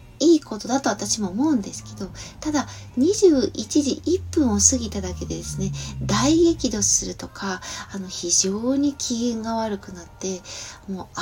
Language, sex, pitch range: Japanese, female, 190-270 Hz